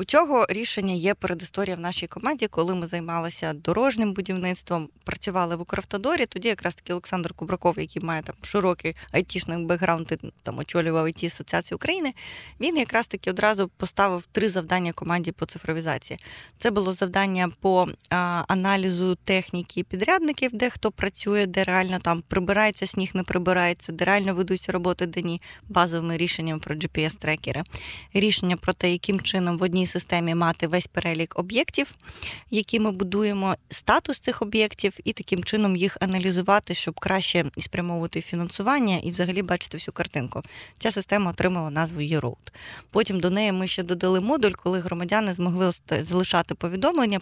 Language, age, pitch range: Ukrainian, 20-39, 170-200 Hz